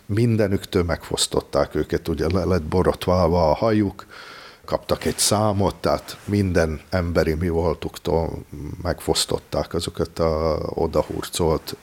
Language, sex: Hungarian, male